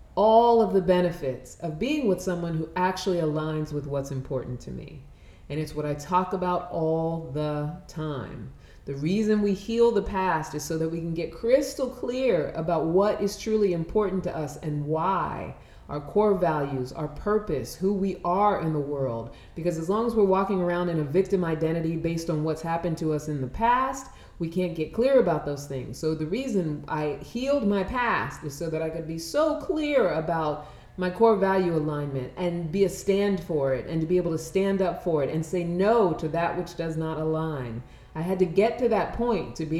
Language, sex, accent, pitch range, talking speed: English, female, American, 155-195 Hz, 210 wpm